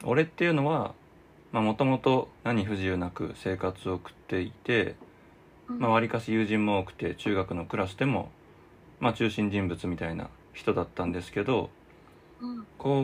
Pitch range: 95-120 Hz